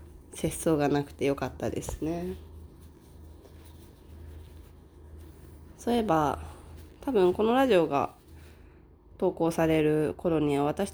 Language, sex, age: Japanese, female, 20-39